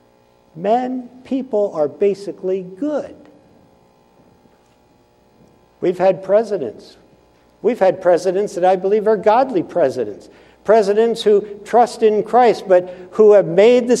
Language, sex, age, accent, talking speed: English, male, 60-79, American, 115 wpm